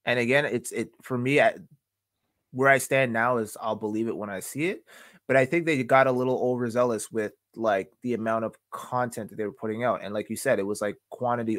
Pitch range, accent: 105-130 Hz, American